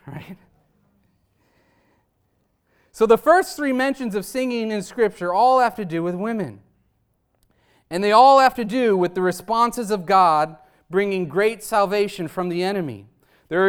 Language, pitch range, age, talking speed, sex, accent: English, 140-195 Hz, 40-59, 150 wpm, male, American